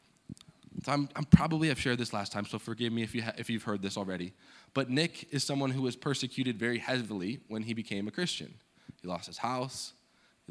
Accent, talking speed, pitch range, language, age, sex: American, 230 wpm, 105-135 Hz, English, 20-39, male